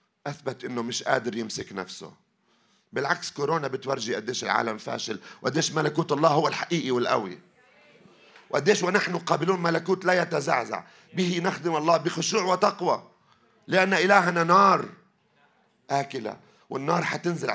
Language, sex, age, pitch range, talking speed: Arabic, male, 40-59, 125-190 Hz, 120 wpm